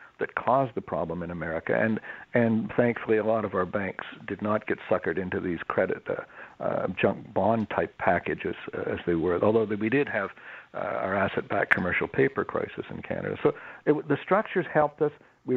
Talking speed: 190 wpm